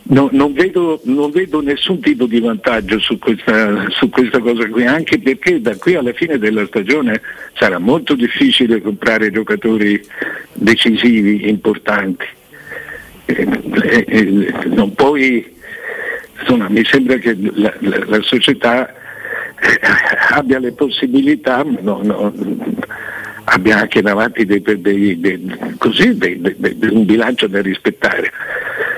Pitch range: 110-175 Hz